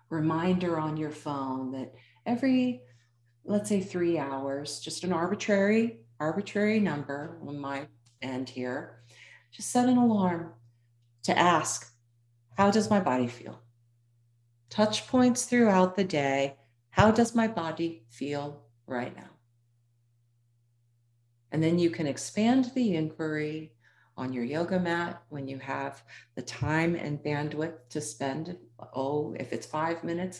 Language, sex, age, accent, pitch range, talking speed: English, female, 40-59, American, 120-170 Hz, 130 wpm